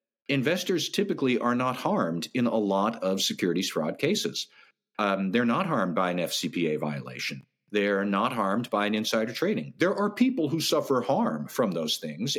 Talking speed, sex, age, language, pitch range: 175 wpm, male, 50-69, English, 105-160 Hz